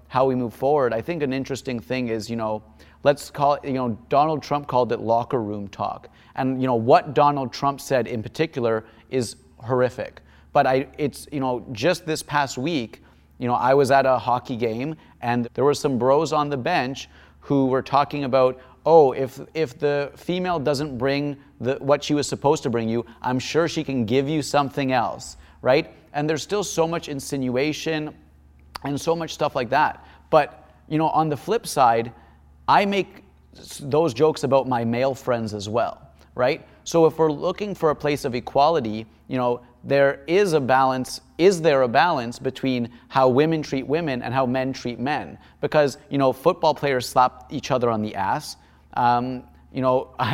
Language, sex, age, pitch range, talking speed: English, male, 30-49, 120-145 Hz, 195 wpm